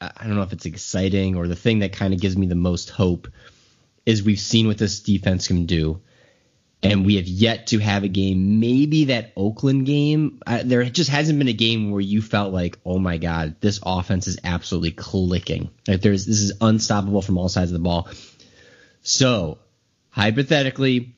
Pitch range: 95-125 Hz